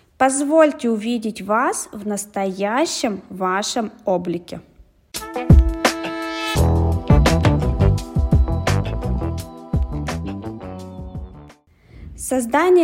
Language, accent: Russian, native